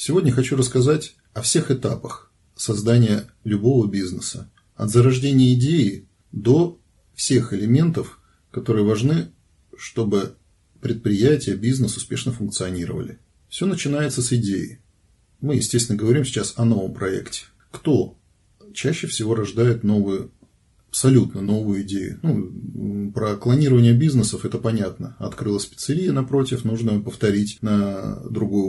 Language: Russian